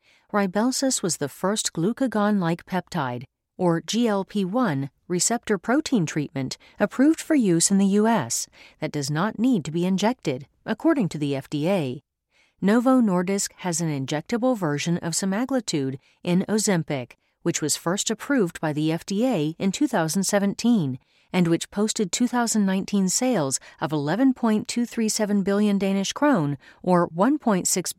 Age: 40-59